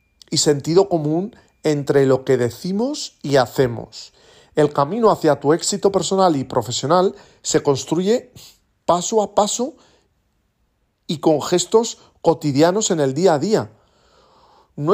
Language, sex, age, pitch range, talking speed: Spanish, male, 40-59, 135-195 Hz, 130 wpm